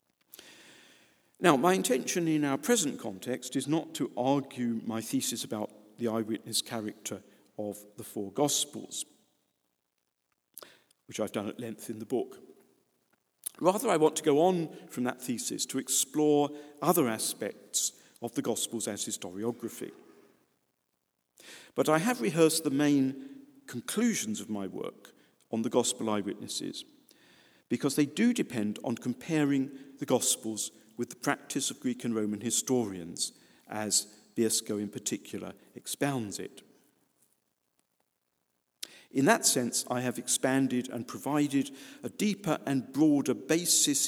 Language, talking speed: English, 130 wpm